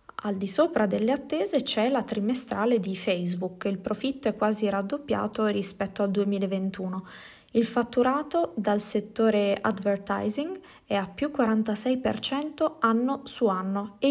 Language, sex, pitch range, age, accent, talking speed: Italian, female, 195-235 Hz, 20-39, native, 130 wpm